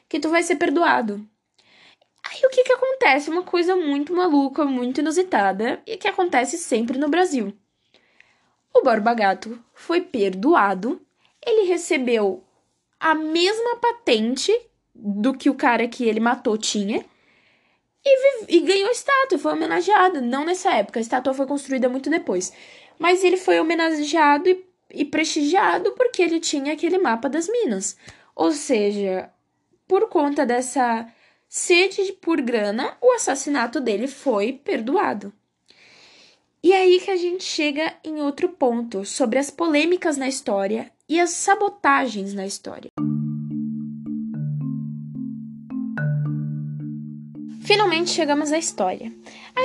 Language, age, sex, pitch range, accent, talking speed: Portuguese, 10-29, female, 225-360 Hz, Brazilian, 135 wpm